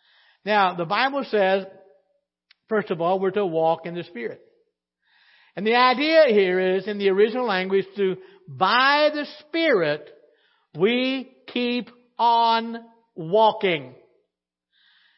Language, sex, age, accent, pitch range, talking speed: English, male, 60-79, American, 155-210 Hz, 120 wpm